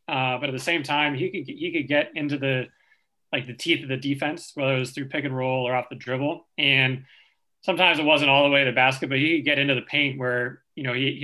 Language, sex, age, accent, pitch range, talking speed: English, male, 20-39, American, 130-145 Hz, 270 wpm